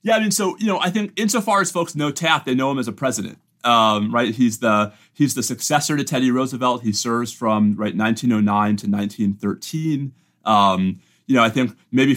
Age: 30-49